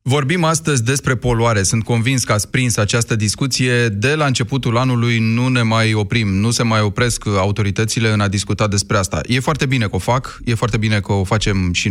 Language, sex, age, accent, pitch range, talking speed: Romanian, male, 30-49, native, 105-135 Hz, 210 wpm